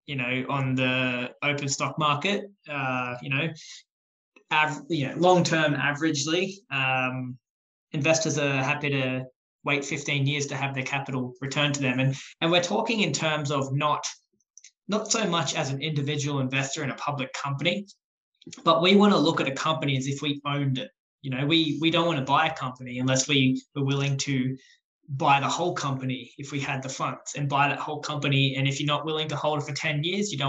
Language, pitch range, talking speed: English, 130-150 Hz, 205 wpm